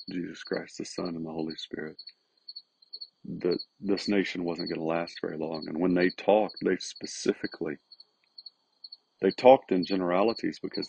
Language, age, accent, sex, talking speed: English, 40-59, American, male, 155 wpm